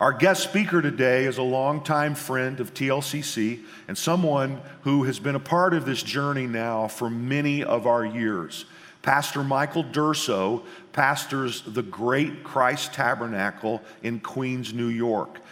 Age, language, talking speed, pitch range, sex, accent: 50-69, English, 145 wpm, 115-140 Hz, male, American